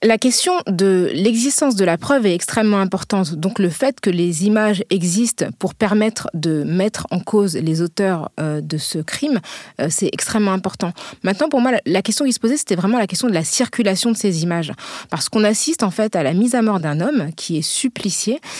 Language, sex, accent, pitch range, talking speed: French, female, French, 175-225 Hz, 205 wpm